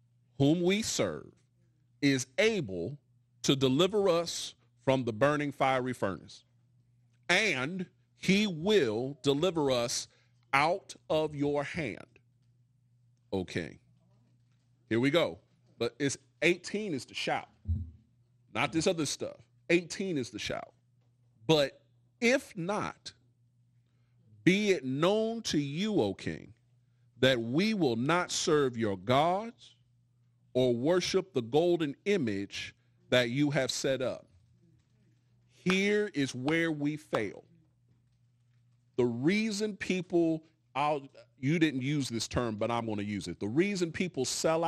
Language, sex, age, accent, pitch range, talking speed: English, male, 40-59, American, 120-155 Hz, 120 wpm